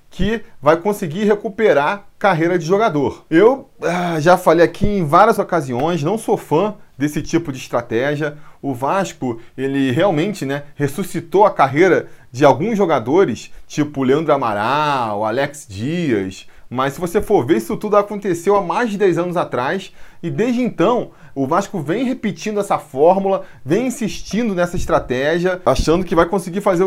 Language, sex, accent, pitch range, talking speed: Portuguese, male, Brazilian, 150-210 Hz, 155 wpm